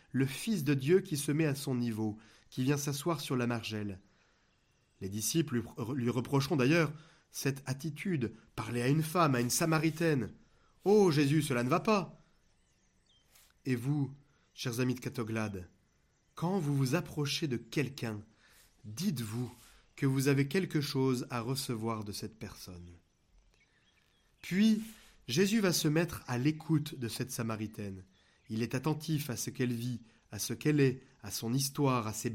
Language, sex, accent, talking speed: French, male, French, 160 wpm